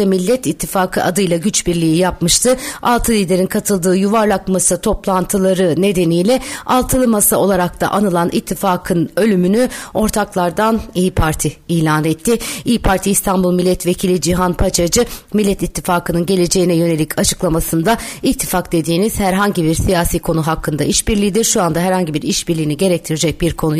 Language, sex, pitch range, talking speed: Turkish, female, 180-225 Hz, 135 wpm